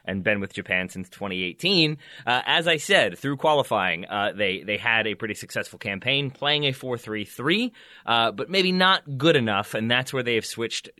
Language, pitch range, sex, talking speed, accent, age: English, 110-145 Hz, male, 185 wpm, American, 30-49